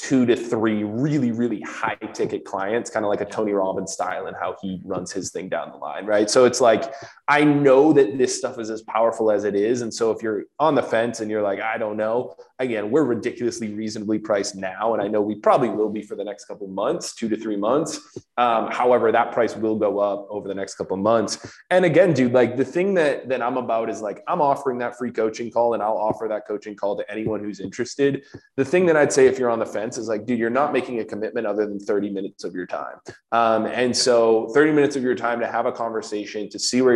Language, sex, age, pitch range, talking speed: English, male, 20-39, 105-125 Hz, 255 wpm